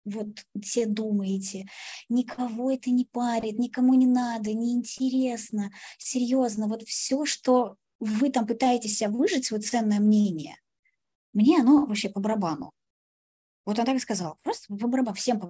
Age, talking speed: 20-39, 135 wpm